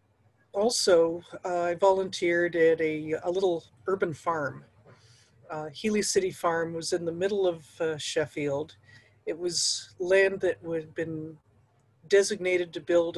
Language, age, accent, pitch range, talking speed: English, 50-69, American, 145-185 Hz, 135 wpm